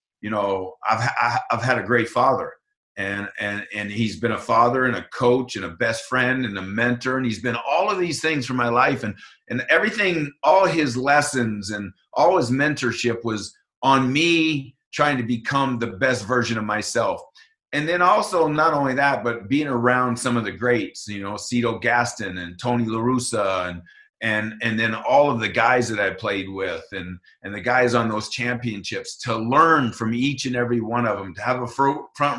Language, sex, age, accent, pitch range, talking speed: English, male, 50-69, American, 110-135 Hz, 200 wpm